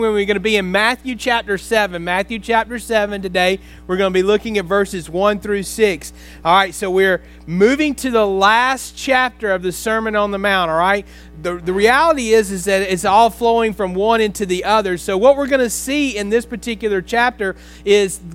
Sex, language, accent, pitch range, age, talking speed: male, English, American, 190-235 Hz, 30-49, 210 wpm